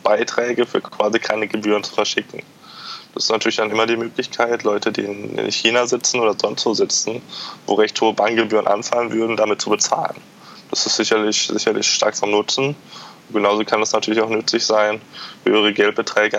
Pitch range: 100-115 Hz